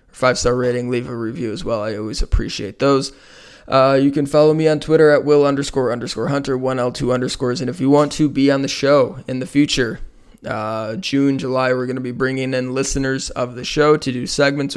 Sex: male